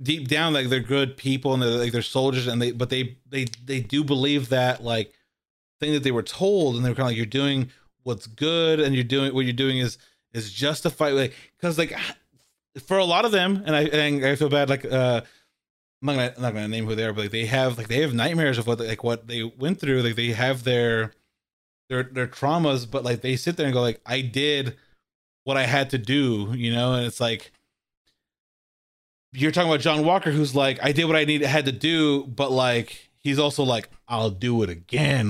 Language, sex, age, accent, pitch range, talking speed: English, male, 30-49, American, 120-145 Hz, 235 wpm